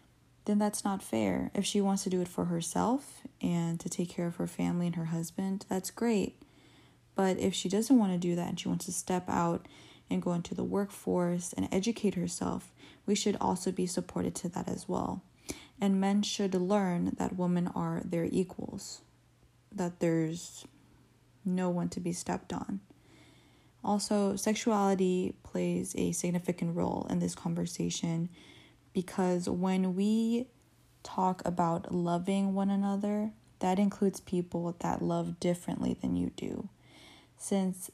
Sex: female